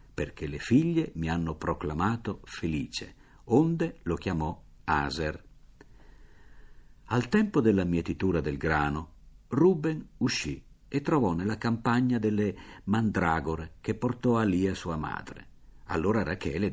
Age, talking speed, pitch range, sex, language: 50-69, 120 wpm, 80-110 Hz, male, Italian